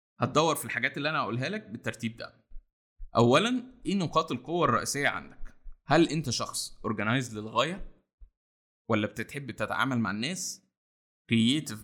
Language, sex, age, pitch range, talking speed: Arabic, male, 20-39, 110-155 Hz, 130 wpm